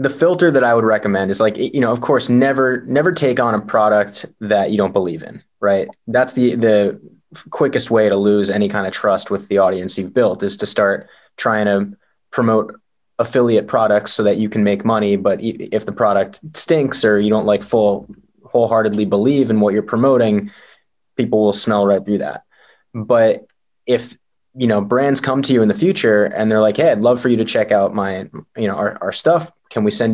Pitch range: 105-130 Hz